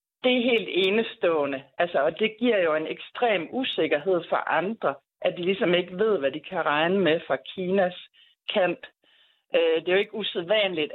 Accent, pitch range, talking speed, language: native, 150-195 Hz, 170 wpm, Danish